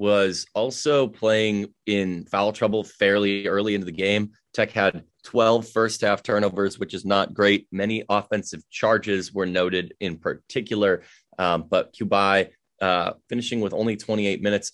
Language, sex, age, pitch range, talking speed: English, male, 30-49, 90-105 Hz, 150 wpm